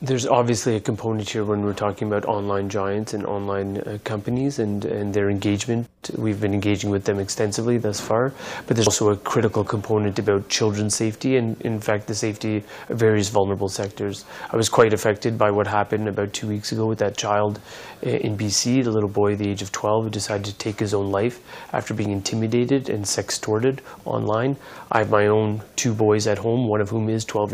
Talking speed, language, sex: 205 wpm, English, male